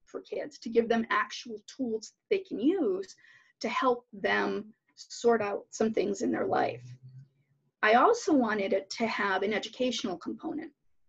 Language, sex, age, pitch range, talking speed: English, female, 40-59, 220-315 Hz, 155 wpm